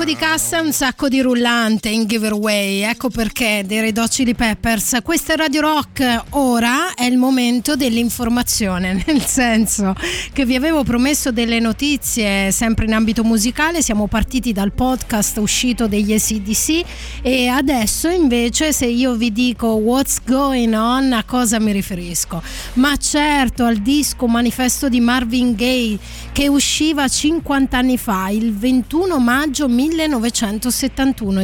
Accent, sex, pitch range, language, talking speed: native, female, 220-275 Hz, Italian, 135 wpm